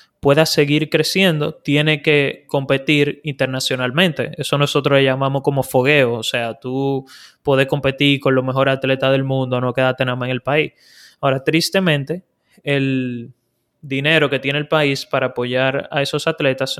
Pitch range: 135-160 Hz